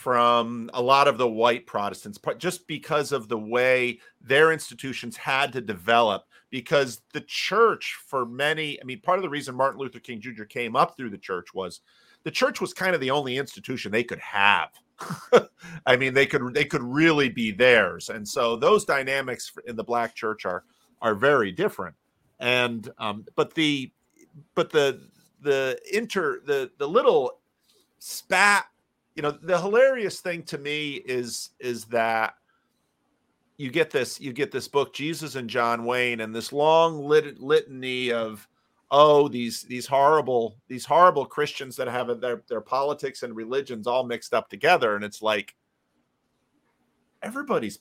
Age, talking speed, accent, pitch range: 40-59, 165 wpm, American, 115-150 Hz